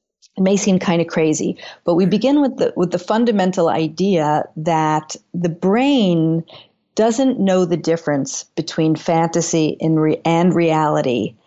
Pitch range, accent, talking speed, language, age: 155-185 Hz, American, 135 wpm, English, 50-69